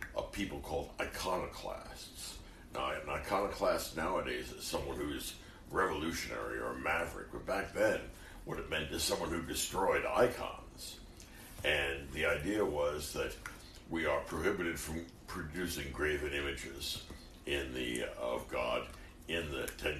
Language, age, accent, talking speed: English, 60-79, American, 140 wpm